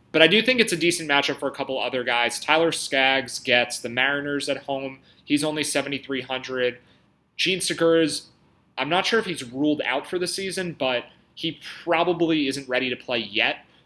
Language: English